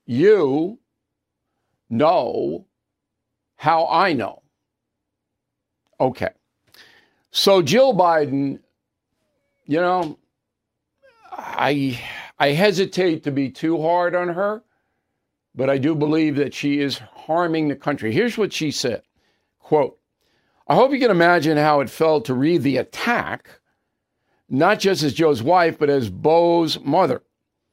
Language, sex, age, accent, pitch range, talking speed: English, male, 60-79, American, 140-175 Hz, 120 wpm